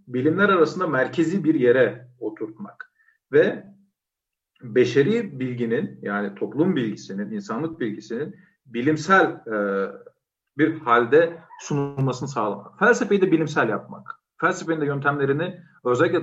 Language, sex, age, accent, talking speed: Turkish, male, 50-69, native, 100 wpm